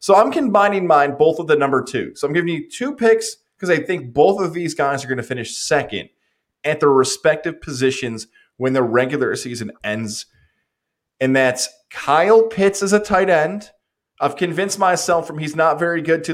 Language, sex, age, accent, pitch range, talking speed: English, male, 20-39, American, 130-175 Hz, 195 wpm